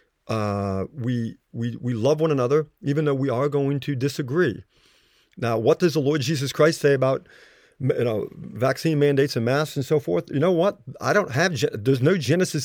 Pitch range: 125-155 Hz